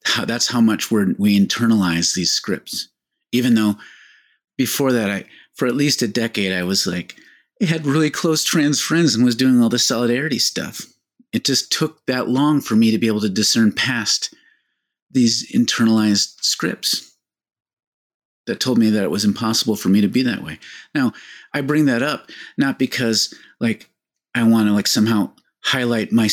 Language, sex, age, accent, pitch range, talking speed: English, male, 40-59, American, 110-145 Hz, 180 wpm